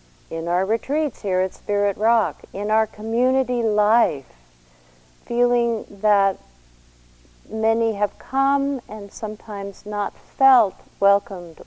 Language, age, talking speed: English, 50-69, 110 wpm